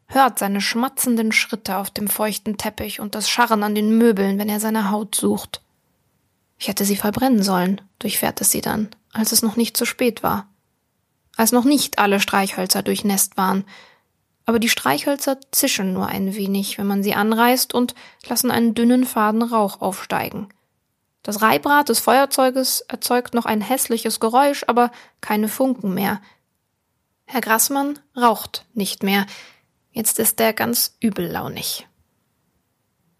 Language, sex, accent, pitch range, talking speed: German, female, German, 205-250 Hz, 150 wpm